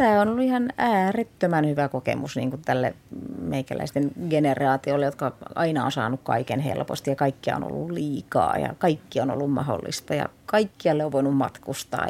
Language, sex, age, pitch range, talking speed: Finnish, female, 30-49, 145-170 Hz, 165 wpm